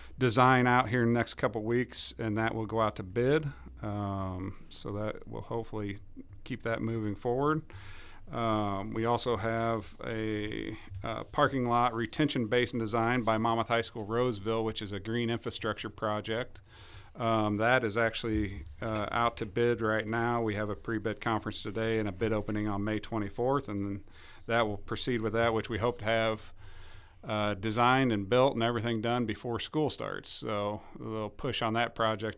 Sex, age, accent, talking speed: male, 40-59, American, 180 wpm